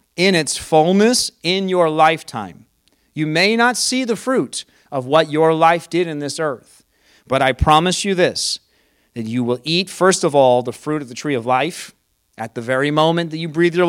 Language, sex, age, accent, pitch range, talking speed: English, male, 40-59, American, 115-170 Hz, 205 wpm